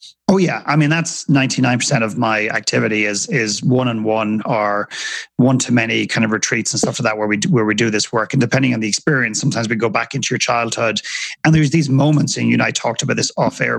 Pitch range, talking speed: 115-145 Hz, 230 wpm